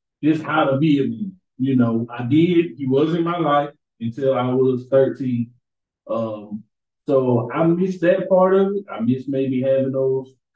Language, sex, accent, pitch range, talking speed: English, male, American, 115-135 Hz, 180 wpm